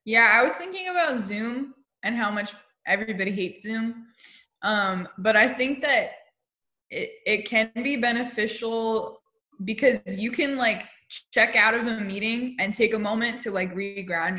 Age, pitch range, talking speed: 20-39, 190-230 Hz, 160 wpm